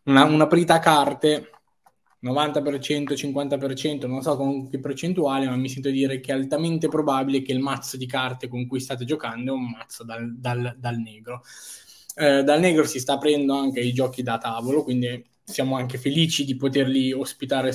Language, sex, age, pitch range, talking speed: Italian, male, 20-39, 130-165 Hz, 180 wpm